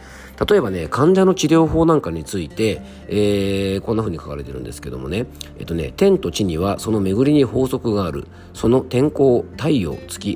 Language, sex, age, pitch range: Japanese, male, 40-59, 85-125 Hz